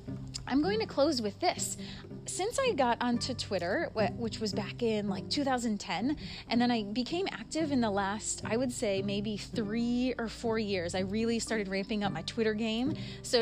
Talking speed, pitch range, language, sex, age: 190 wpm, 200-250 Hz, English, female, 30-49